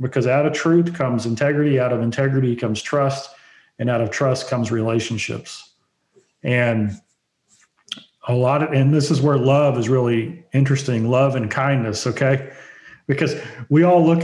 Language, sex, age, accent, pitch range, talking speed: English, male, 40-59, American, 125-160 Hz, 155 wpm